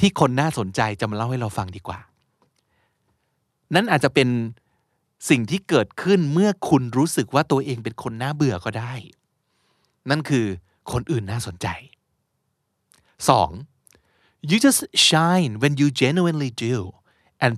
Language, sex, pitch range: Thai, male, 110-155 Hz